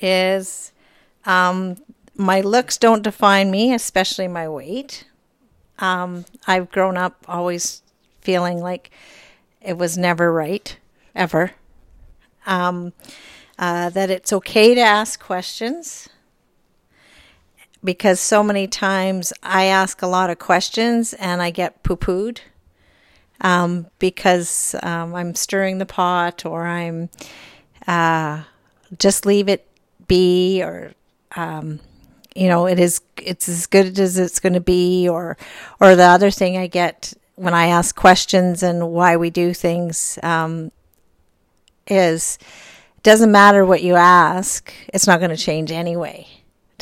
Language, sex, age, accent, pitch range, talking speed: English, female, 50-69, American, 170-190 Hz, 130 wpm